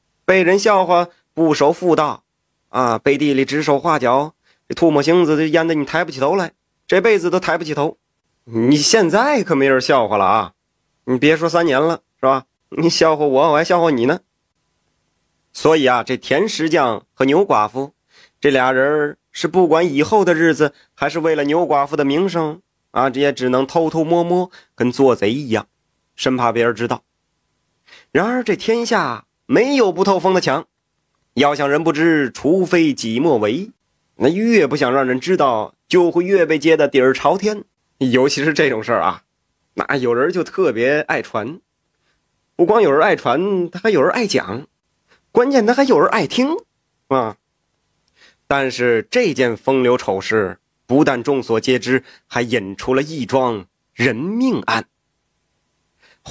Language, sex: Chinese, male